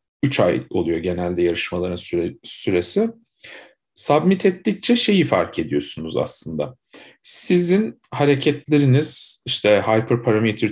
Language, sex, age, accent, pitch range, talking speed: Turkish, male, 50-69, native, 105-150 Hz, 90 wpm